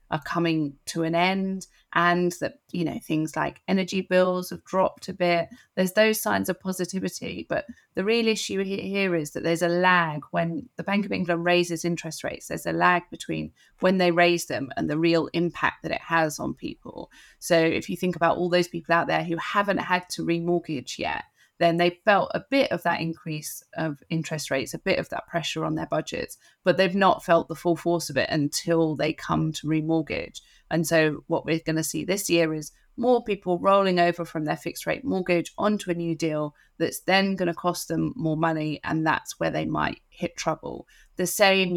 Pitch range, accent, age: 160-180 Hz, British, 30-49